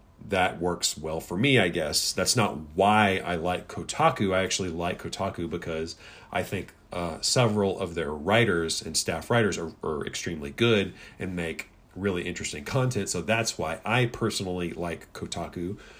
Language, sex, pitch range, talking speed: English, male, 90-115 Hz, 165 wpm